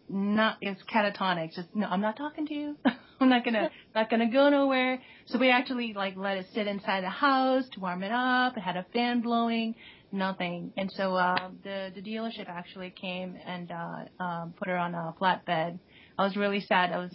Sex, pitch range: female, 180-220 Hz